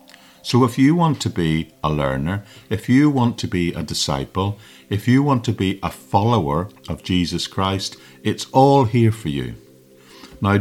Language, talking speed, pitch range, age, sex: English, 175 wpm, 85-115 Hz, 50-69, male